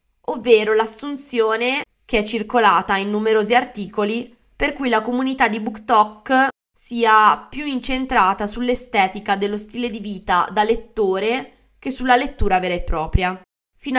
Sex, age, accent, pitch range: female, 20-39, native, 210-245 Hz